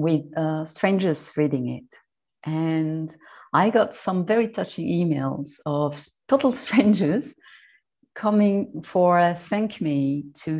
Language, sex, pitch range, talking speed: English, female, 155-215 Hz, 120 wpm